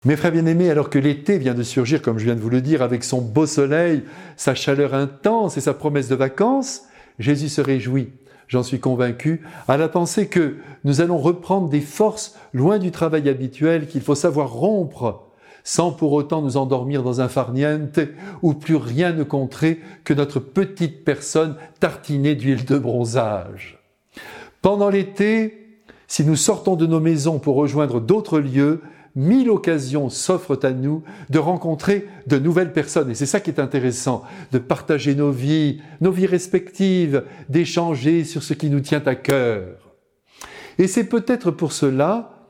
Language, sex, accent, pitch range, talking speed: French, male, French, 135-175 Hz, 170 wpm